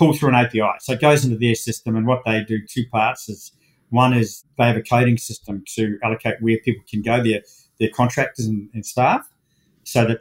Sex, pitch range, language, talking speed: male, 110-135 Hz, English, 215 wpm